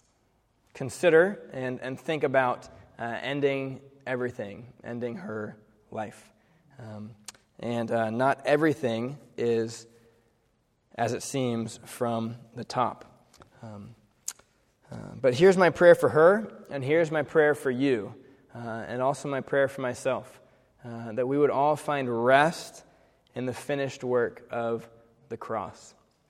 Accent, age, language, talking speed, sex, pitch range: American, 20-39, English, 130 wpm, male, 115-140 Hz